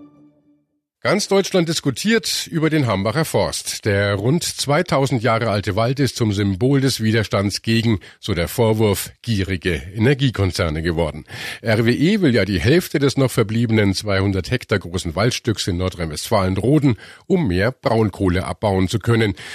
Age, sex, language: 50-69, male, German